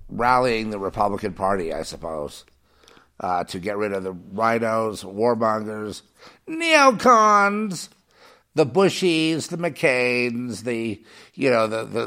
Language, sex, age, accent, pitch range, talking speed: English, male, 50-69, American, 110-145 Hz, 115 wpm